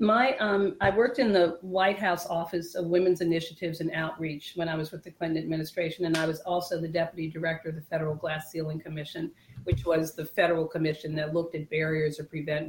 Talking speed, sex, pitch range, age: 215 wpm, female, 160-180 Hz, 40-59